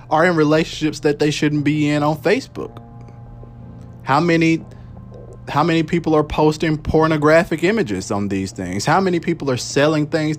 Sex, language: male, English